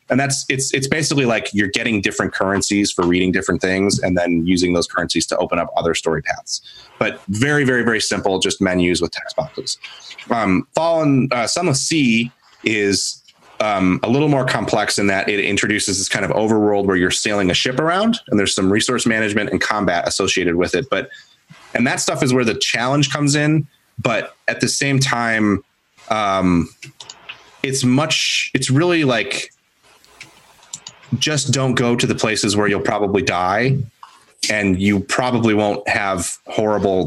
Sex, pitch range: male, 95-130 Hz